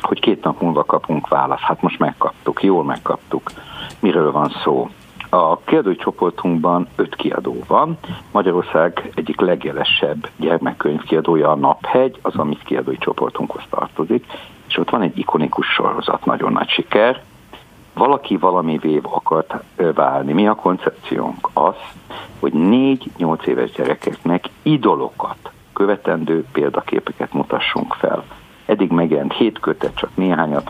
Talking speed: 125 wpm